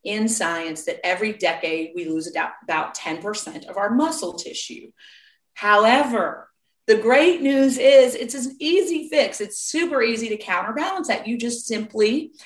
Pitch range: 180-255 Hz